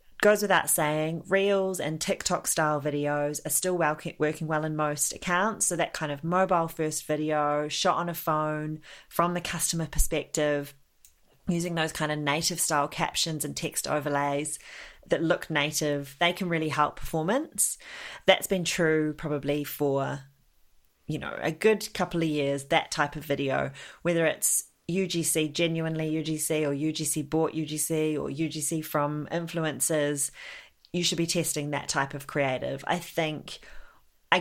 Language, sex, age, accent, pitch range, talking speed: English, female, 30-49, Australian, 150-175 Hz, 155 wpm